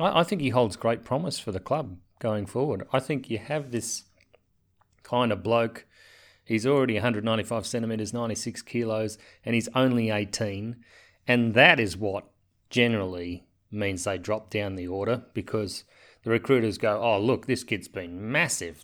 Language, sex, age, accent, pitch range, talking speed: English, male, 30-49, Australian, 105-125 Hz, 160 wpm